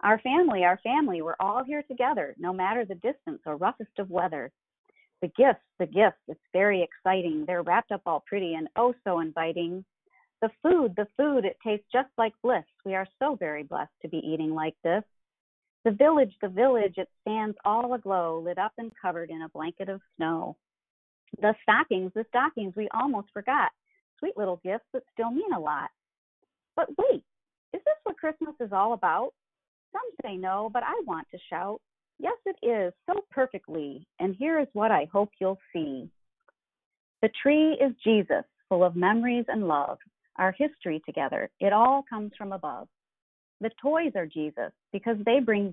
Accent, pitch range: American, 180-260 Hz